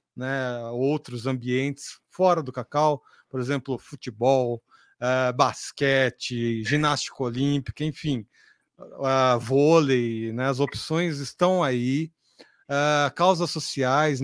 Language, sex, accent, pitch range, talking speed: Portuguese, male, Brazilian, 125-150 Hz, 100 wpm